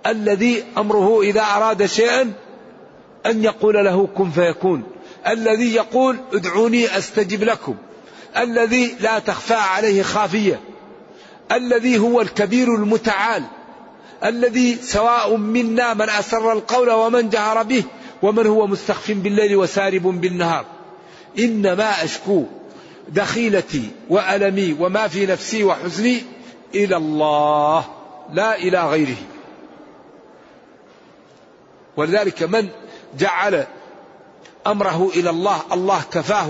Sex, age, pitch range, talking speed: male, 50-69, 180-225 Hz, 100 wpm